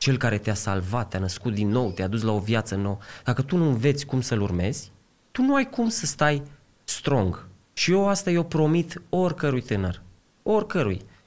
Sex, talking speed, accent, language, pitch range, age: male, 190 wpm, native, Romanian, 100-145 Hz, 20-39